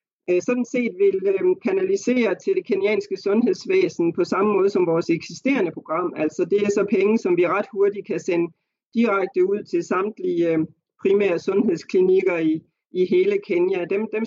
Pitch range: 165-210 Hz